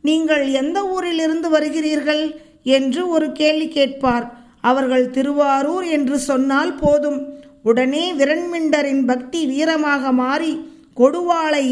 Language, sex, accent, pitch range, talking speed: Tamil, female, native, 265-310 Hz, 100 wpm